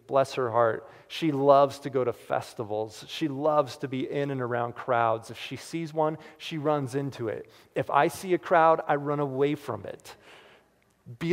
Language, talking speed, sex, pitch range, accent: English, 190 wpm, male, 110-145 Hz, American